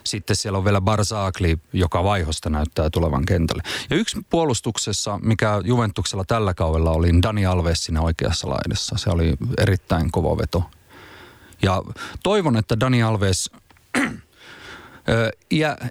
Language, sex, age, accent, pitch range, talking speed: Finnish, male, 30-49, native, 90-110 Hz, 130 wpm